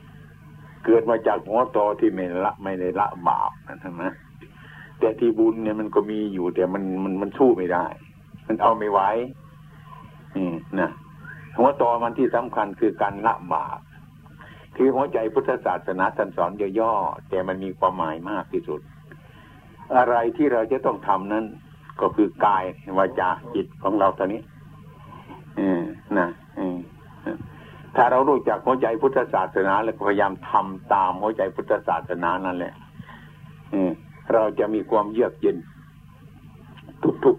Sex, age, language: male, 60-79, Thai